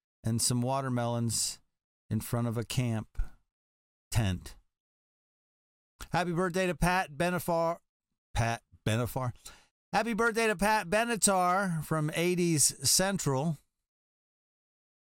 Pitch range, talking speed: 130-185 Hz, 95 wpm